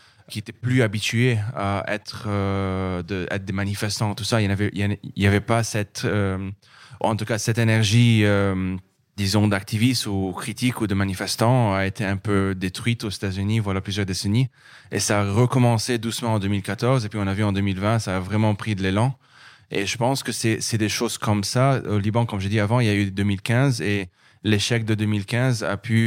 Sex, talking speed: male, 205 wpm